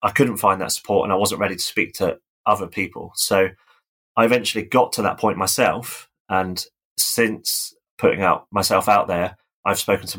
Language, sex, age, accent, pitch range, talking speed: English, male, 20-39, British, 95-105 Hz, 190 wpm